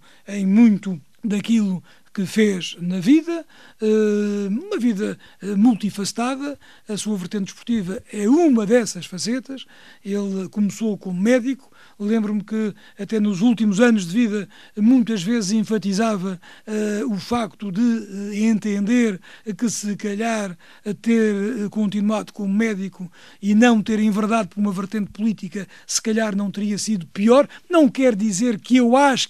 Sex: male